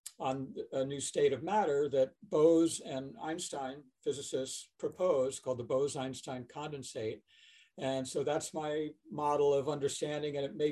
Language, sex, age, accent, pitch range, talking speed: English, male, 60-79, American, 135-185 Hz, 145 wpm